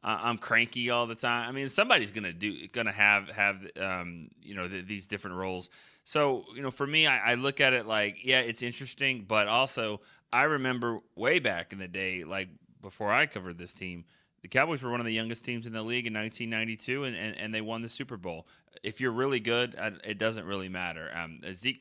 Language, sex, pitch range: English, male, 95-120 Hz